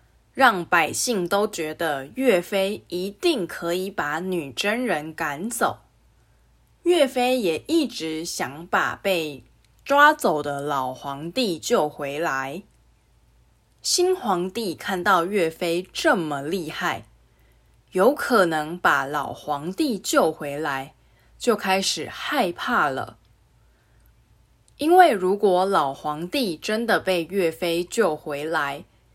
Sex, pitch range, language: female, 155-235 Hz, English